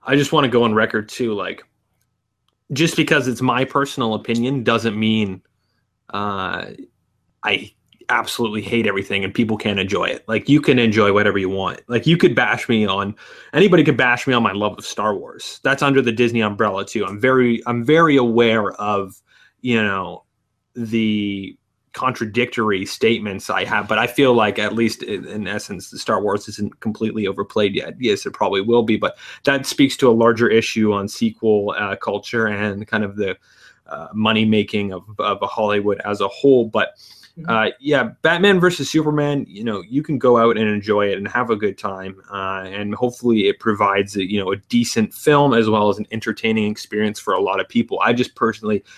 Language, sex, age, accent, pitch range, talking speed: English, male, 20-39, American, 105-125 Hz, 195 wpm